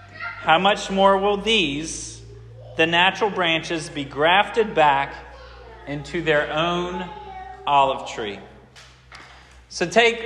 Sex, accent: male, American